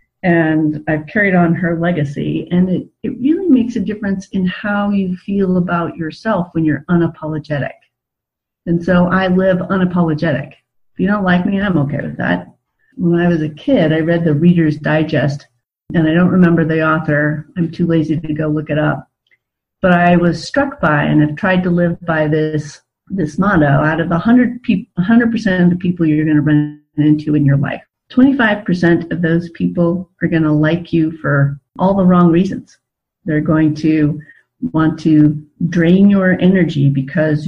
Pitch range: 155-185 Hz